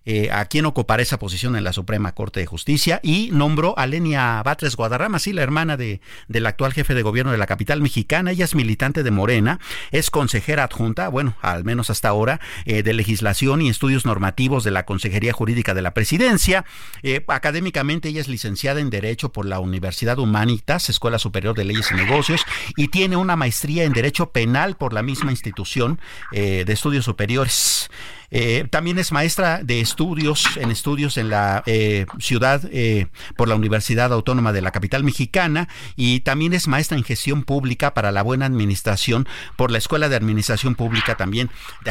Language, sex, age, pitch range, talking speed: Spanish, male, 50-69, 105-145 Hz, 185 wpm